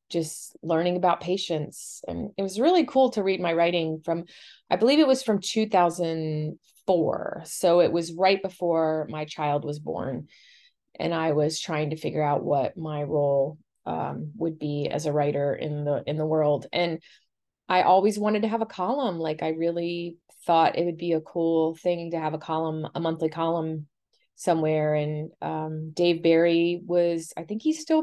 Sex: female